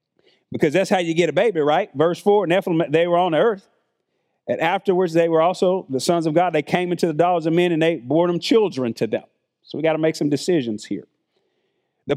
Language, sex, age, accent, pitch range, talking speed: English, male, 40-59, American, 160-205 Hz, 230 wpm